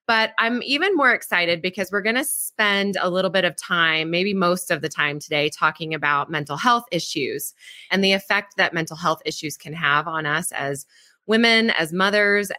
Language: English